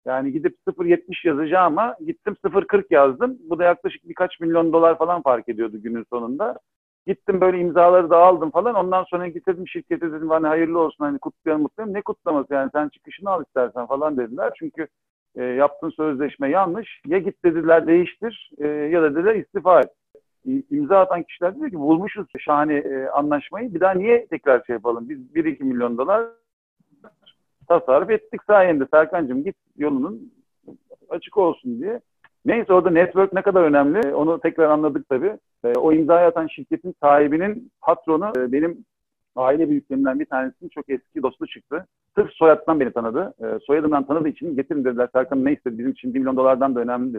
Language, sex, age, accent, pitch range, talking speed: Turkish, male, 50-69, native, 145-200 Hz, 170 wpm